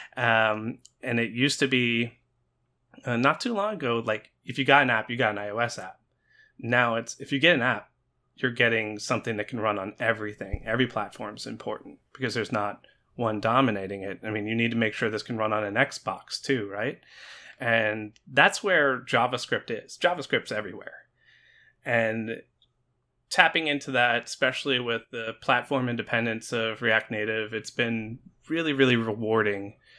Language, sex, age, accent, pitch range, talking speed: English, male, 30-49, American, 110-130 Hz, 170 wpm